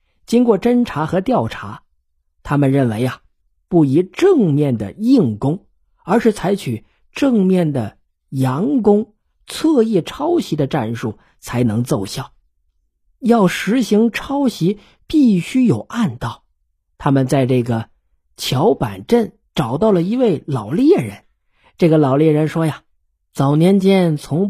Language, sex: Chinese, male